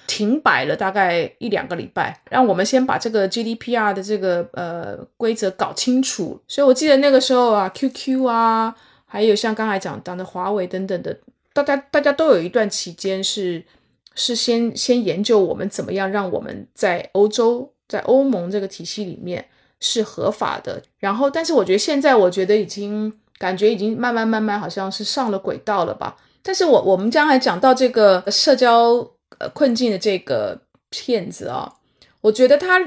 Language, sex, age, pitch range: Chinese, female, 20-39, 195-255 Hz